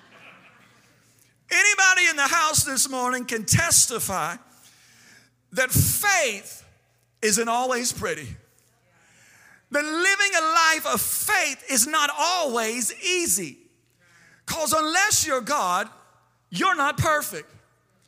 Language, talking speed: English, 100 wpm